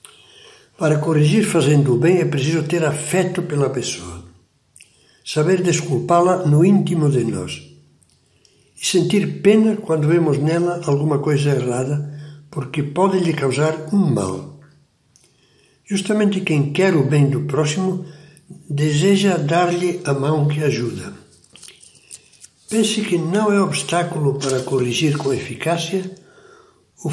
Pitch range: 140-180 Hz